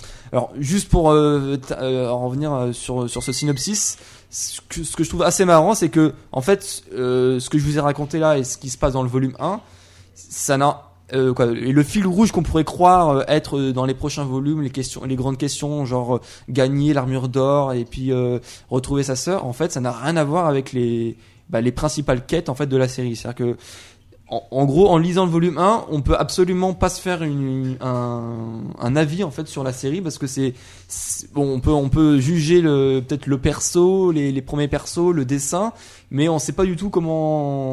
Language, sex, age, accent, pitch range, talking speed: French, male, 20-39, French, 125-155 Hz, 225 wpm